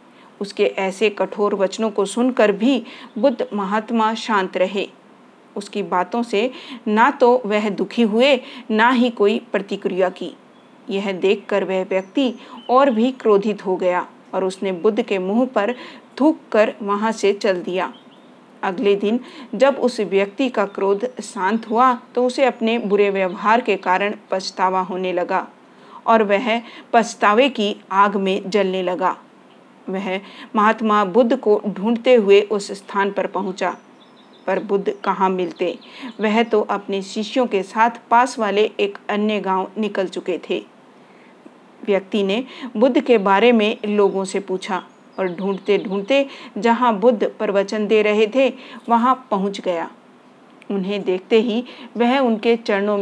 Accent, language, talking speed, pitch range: native, Hindi, 145 wpm, 195-245 Hz